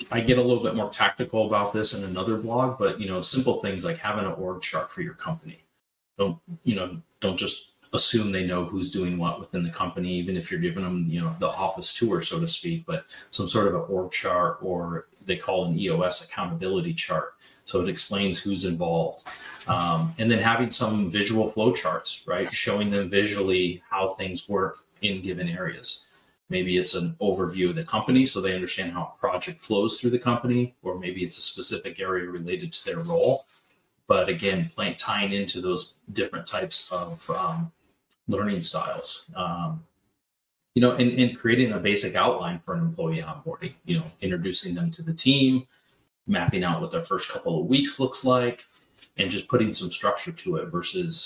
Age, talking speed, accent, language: 30-49, 195 wpm, American, English